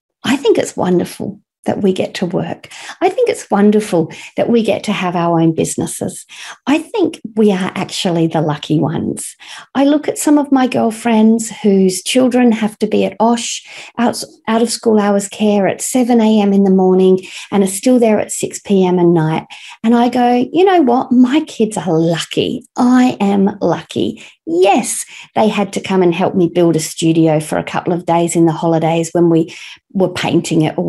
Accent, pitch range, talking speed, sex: Australian, 170-230 Hz, 200 wpm, female